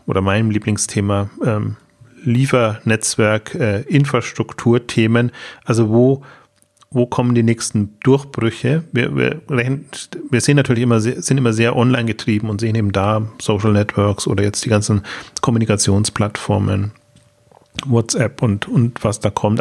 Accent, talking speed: German, 130 wpm